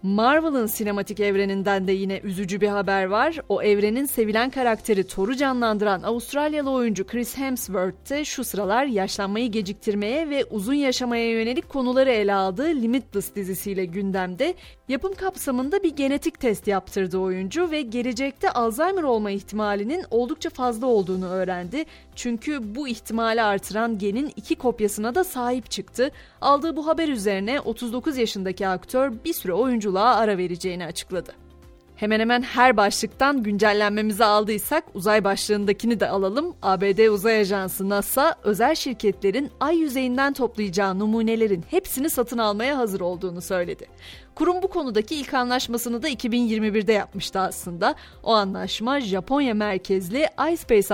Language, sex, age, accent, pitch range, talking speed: Turkish, female, 30-49, native, 200-265 Hz, 135 wpm